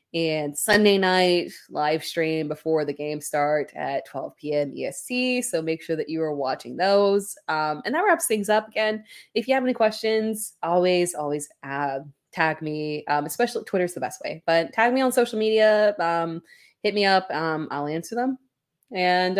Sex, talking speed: female, 185 wpm